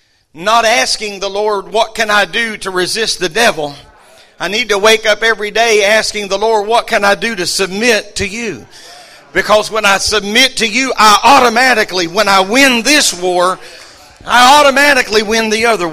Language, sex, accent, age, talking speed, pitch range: English, male, American, 50-69, 180 wpm, 180-215 Hz